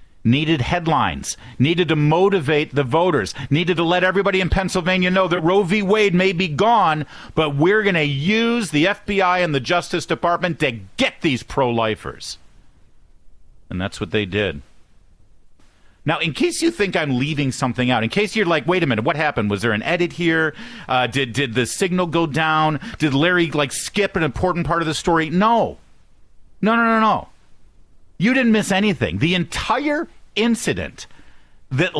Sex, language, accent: male, English, American